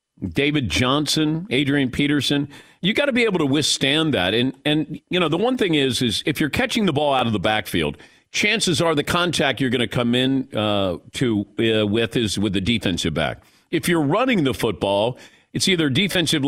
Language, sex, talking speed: English, male, 210 wpm